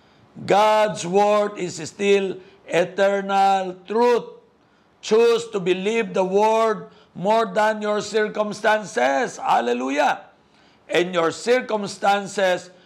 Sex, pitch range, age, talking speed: male, 175-225 Hz, 60-79, 90 wpm